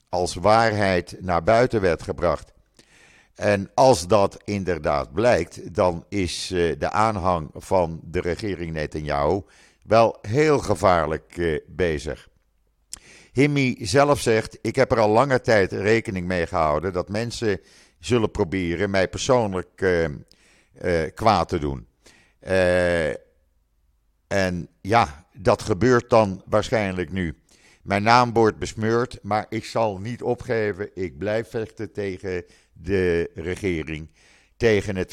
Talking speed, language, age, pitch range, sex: 115 wpm, Dutch, 50-69, 85-115 Hz, male